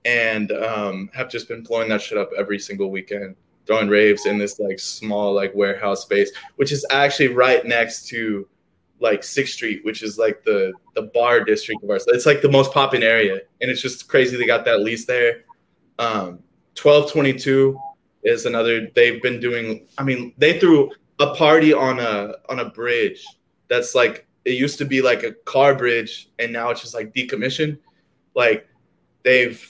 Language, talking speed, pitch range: English, 185 wpm, 115-175 Hz